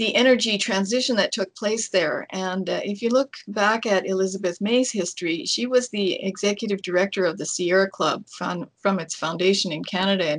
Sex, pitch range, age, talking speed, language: female, 180-205 Hz, 50-69, 190 wpm, English